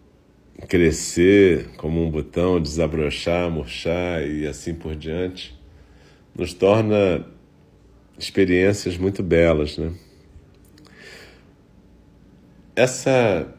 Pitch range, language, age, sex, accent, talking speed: 75-95 Hz, Portuguese, 40-59, male, Brazilian, 75 wpm